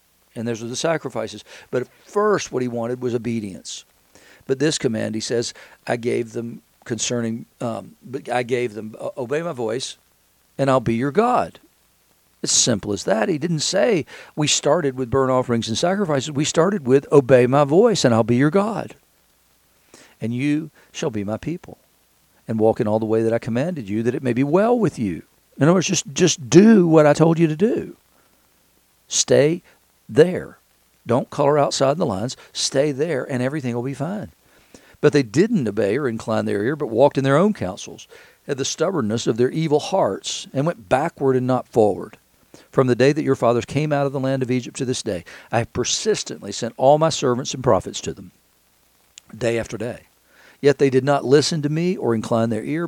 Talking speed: 200 wpm